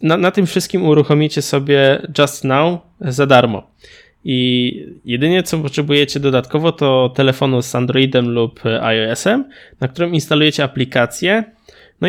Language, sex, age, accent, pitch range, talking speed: Polish, male, 20-39, native, 130-155 Hz, 130 wpm